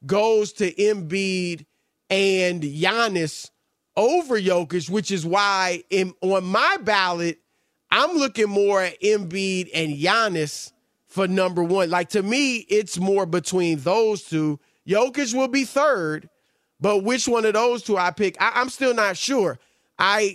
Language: English